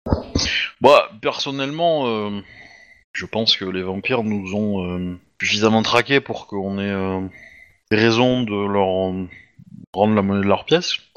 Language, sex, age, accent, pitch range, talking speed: French, male, 30-49, French, 90-110 Hz, 140 wpm